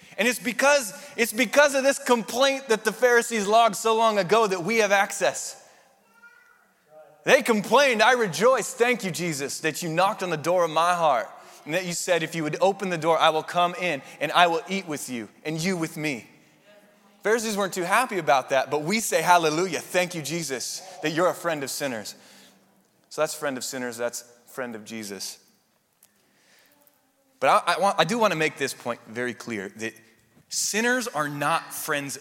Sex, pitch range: male, 155-205 Hz